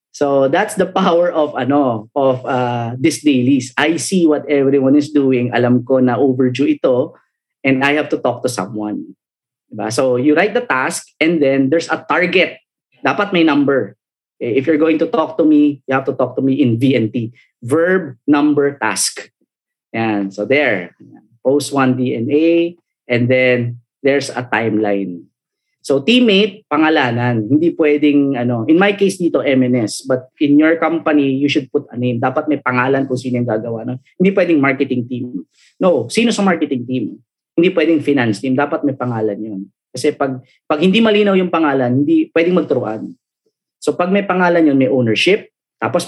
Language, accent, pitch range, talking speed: Filipino, native, 125-160 Hz, 175 wpm